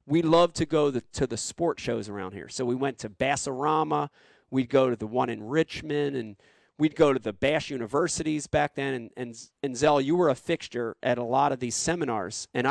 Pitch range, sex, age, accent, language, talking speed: 130-180 Hz, male, 40-59, American, English, 220 wpm